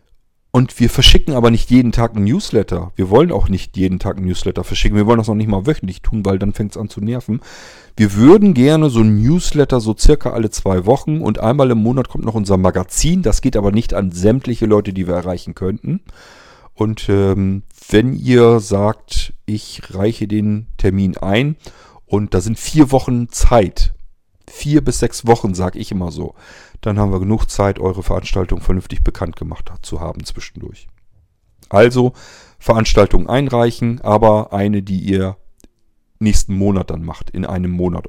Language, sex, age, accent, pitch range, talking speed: German, male, 40-59, German, 95-115 Hz, 180 wpm